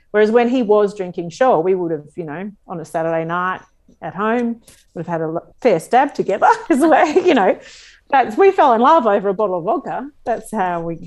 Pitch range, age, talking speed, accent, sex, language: 170-210 Hz, 40-59, 230 wpm, Australian, female, English